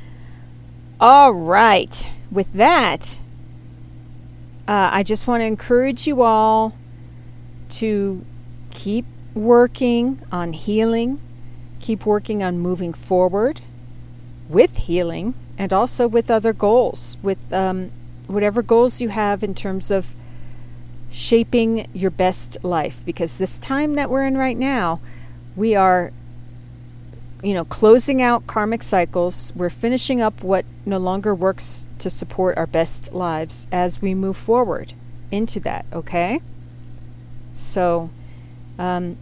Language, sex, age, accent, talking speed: English, female, 40-59, American, 120 wpm